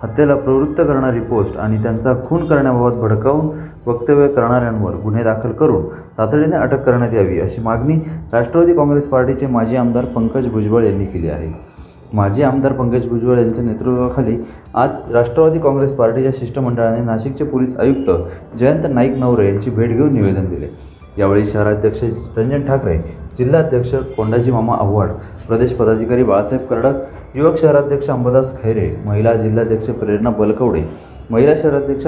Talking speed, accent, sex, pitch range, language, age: 140 wpm, native, male, 110-135 Hz, Marathi, 30-49